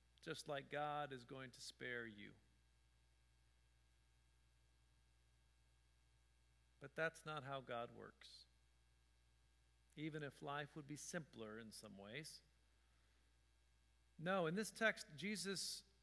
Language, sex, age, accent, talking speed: English, male, 50-69, American, 105 wpm